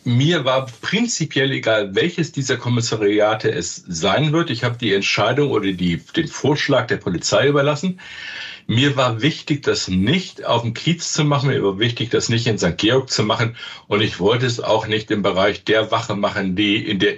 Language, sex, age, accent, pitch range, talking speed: German, male, 60-79, German, 105-145 Hz, 190 wpm